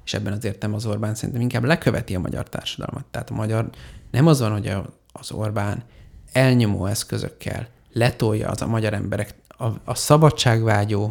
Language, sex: Hungarian, male